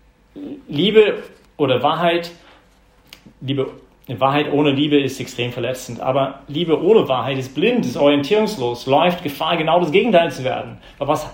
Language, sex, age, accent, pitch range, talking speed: English, male, 40-59, German, 125-160 Hz, 145 wpm